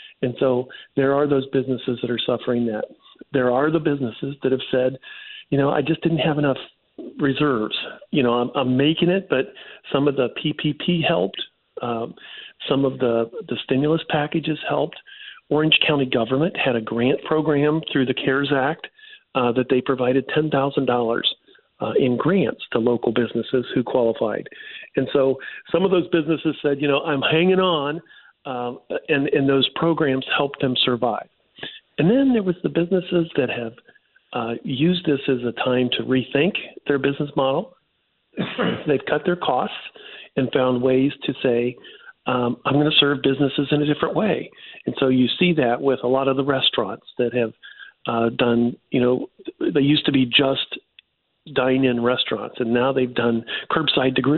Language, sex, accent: English, male, American